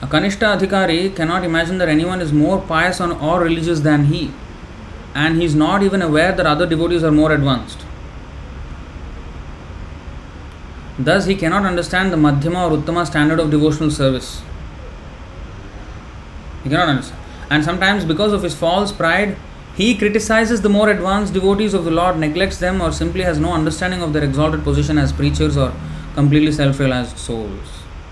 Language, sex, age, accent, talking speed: English, male, 30-49, Indian, 160 wpm